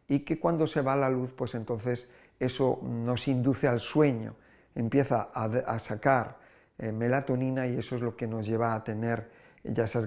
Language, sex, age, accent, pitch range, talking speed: Spanish, male, 50-69, Spanish, 115-140 Hz, 185 wpm